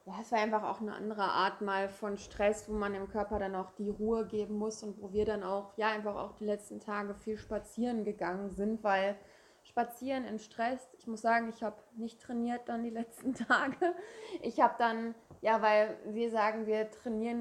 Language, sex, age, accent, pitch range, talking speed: German, female, 20-39, German, 210-240 Hz, 205 wpm